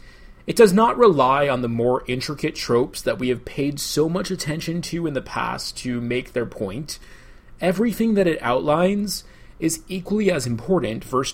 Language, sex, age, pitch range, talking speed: English, male, 30-49, 125-185 Hz, 175 wpm